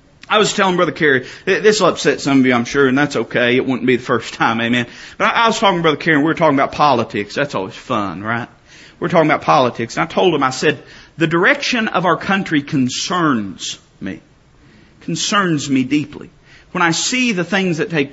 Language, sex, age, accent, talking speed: English, male, 40-59, American, 225 wpm